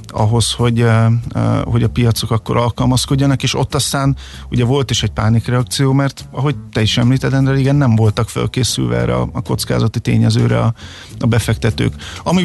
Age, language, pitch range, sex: 50-69, Hungarian, 110-125 Hz, male